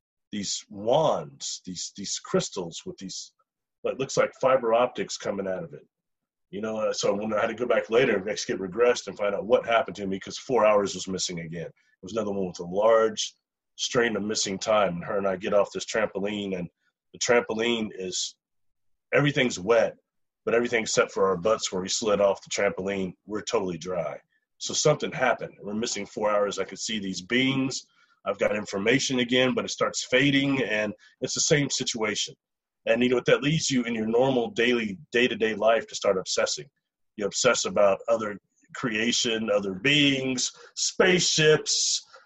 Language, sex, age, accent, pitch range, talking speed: English, male, 30-49, American, 105-145 Hz, 185 wpm